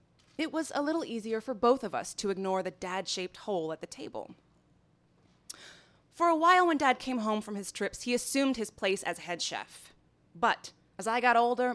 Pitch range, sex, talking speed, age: 190-245 Hz, female, 200 wpm, 20-39